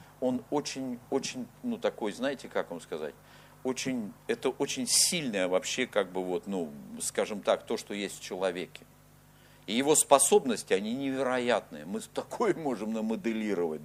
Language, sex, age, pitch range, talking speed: Russian, male, 50-69, 120-185 Hz, 145 wpm